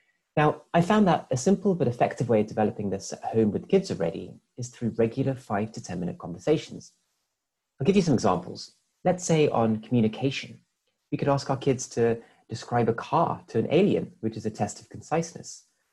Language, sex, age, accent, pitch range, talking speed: English, male, 30-49, British, 105-145 Hz, 195 wpm